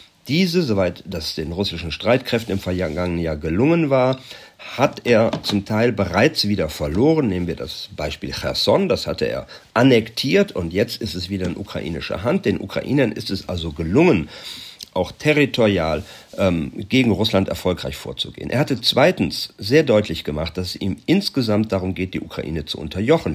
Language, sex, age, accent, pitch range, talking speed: German, male, 50-69, German, 90-130 Hz, 165 wpm